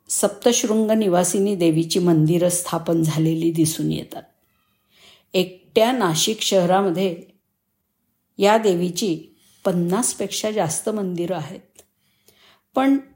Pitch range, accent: 175-225 Hz, native